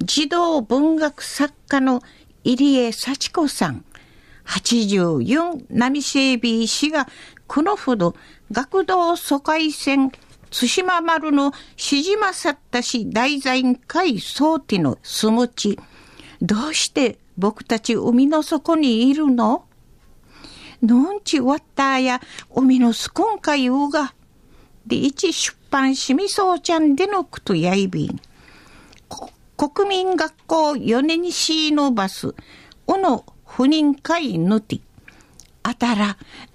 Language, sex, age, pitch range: Japanese, female, 50-69, 240-315 Hz